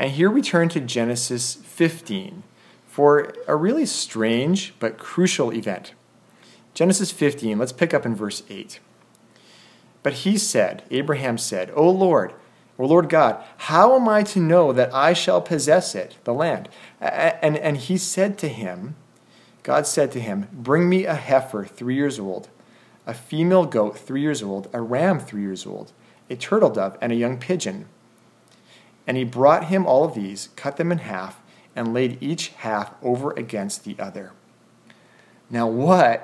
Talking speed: 165 wpm